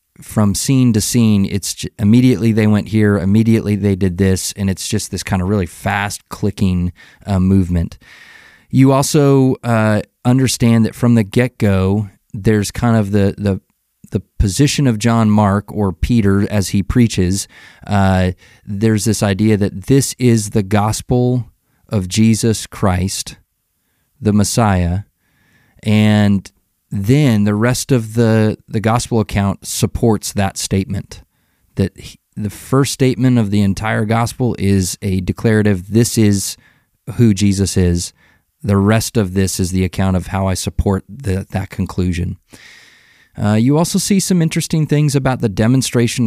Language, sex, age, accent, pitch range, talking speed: English, male, 30-49, American, 95-115 Hz, 145 wpm